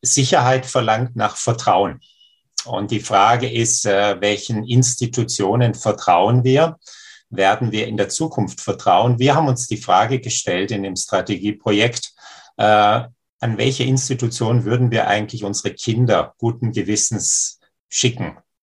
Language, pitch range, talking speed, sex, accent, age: German, 105-125 Hz, 130 wpm, male, German, 50-69